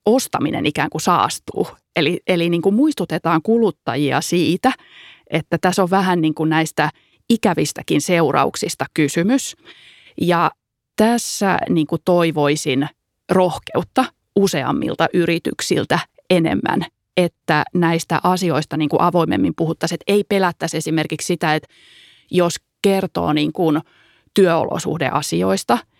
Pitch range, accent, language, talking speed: 155-195 Hz, native, Finnish, 110 wpm